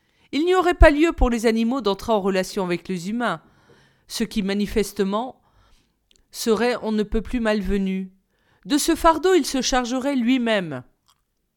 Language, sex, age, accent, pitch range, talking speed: French, female, 40-59, French, 190-265 Hz, 155 wpm